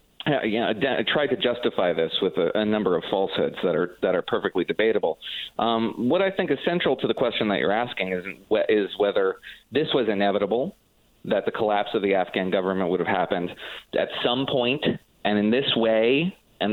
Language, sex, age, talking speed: English, male, 30-49, 200 wpm